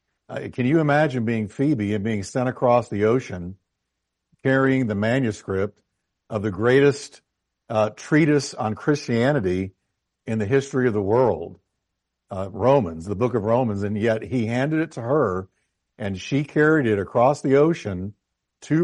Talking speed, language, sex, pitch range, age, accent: 155 wpm, English, male, 105-135 Hz, 60-79, American